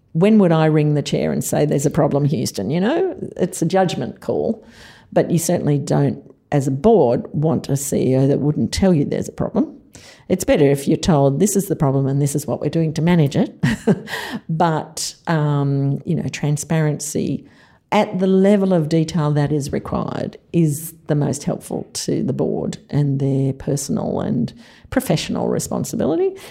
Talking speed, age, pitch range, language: 180 wpm, 50-69, 145-185 Hz, English